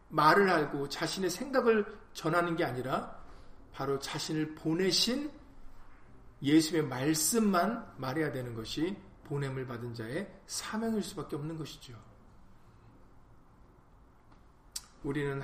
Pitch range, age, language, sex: 140-210 Hz, 40-59, Korean, male